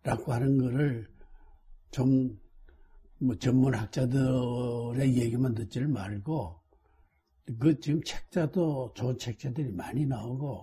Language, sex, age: Korean, male, 60-79